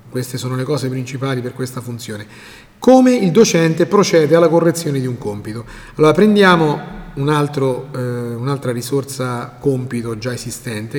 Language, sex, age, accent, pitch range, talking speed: Italian, male, 30-49, native, 120-170 Hz, 145 wpm